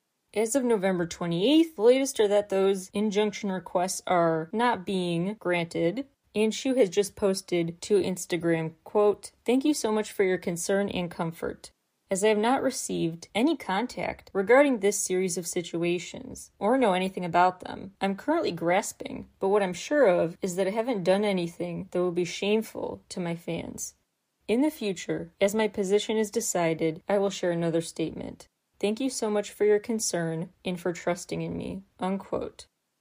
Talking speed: 175 wpm